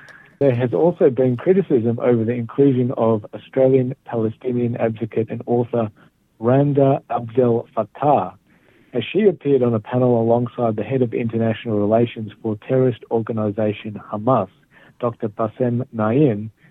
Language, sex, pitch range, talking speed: Hebrew, male, 110-130 Hz, 125 wpm